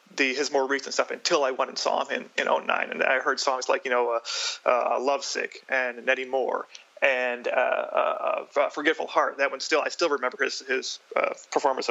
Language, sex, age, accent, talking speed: English, male, 30-49, American, 215 wpm